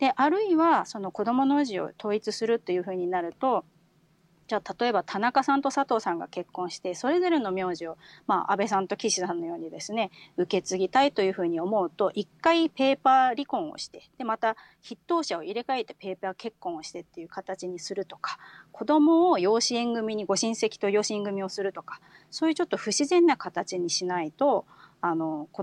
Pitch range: 185-265 Hz